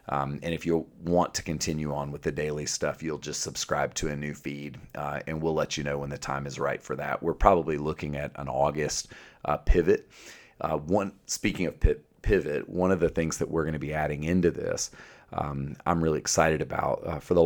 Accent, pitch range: American, 75-85 Hz